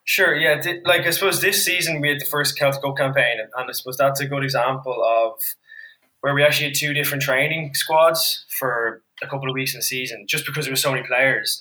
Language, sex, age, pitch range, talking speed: English, male, 10-29, 125-150 Hz, 235 wpm